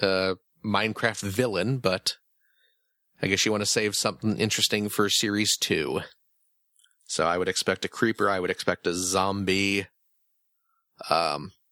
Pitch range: 100-125 Hz